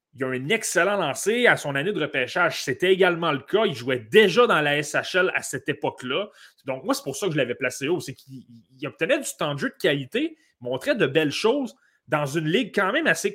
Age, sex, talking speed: 30-49, male, 235 wpm